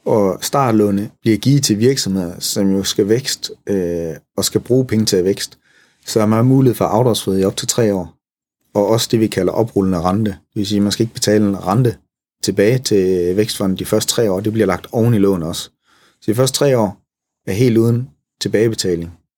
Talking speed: 215 wpm